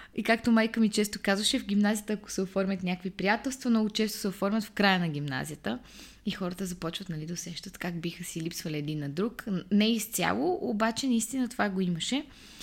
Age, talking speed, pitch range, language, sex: 20-39, 195 wpm, 180-230 Hz, Bulgarian, female